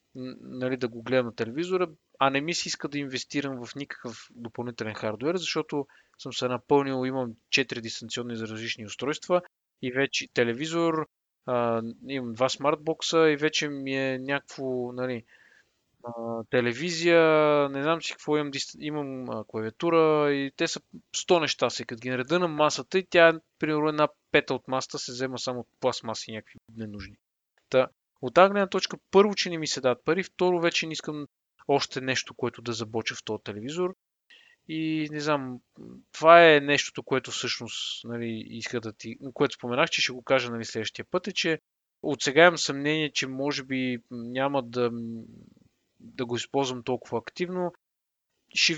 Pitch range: 120-155 Hz